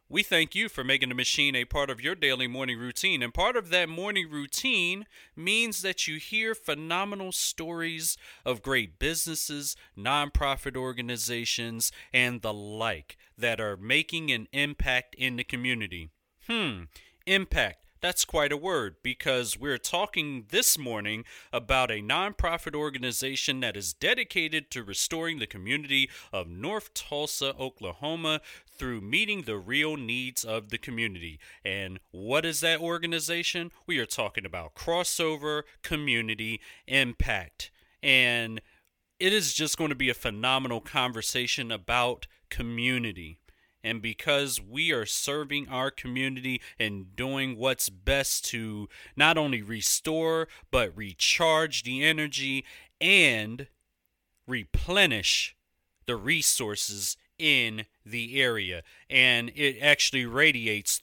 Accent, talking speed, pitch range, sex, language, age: American, 130 wpm, 115-155 Hz, male, English, 40-59